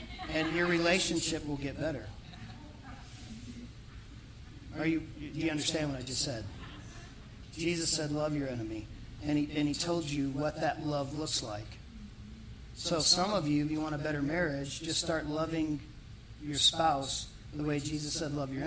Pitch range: 120-165 Hz